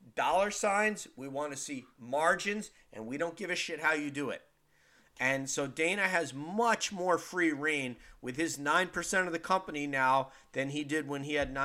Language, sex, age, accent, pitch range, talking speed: English, male, 50-69, American, 140-180 Hz, 195 wpm